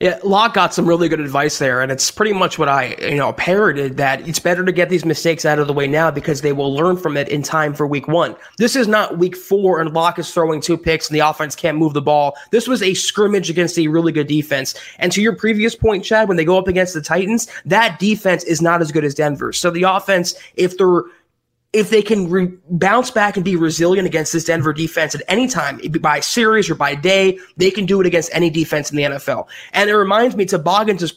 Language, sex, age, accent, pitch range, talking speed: English, male, 20-39, American, 160-200 Hz, 250 wpm